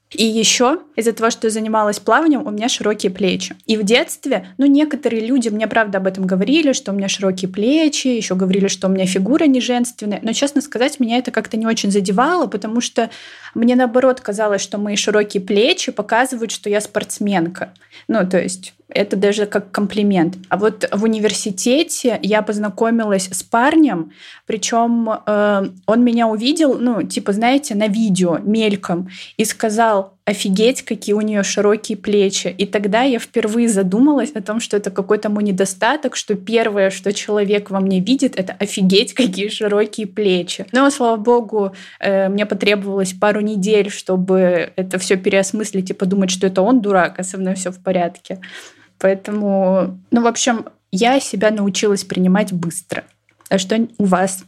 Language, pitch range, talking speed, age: Russian, 195-230 Hz, 165 wpm, 20-39